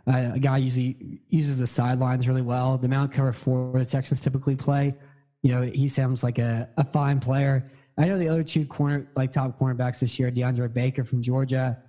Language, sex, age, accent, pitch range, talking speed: English, male, 20-39, American, 125-145 Hz, 200 wpm